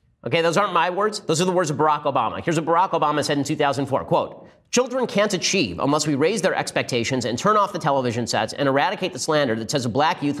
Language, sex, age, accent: English, male, 30-49, American